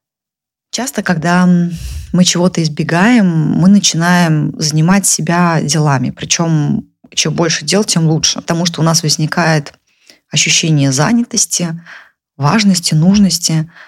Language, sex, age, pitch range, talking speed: Russian, female, 20-39, 150-185 Hz, 110 wpm